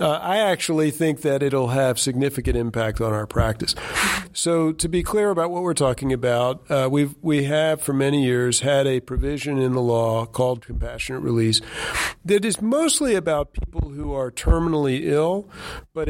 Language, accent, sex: English, American, male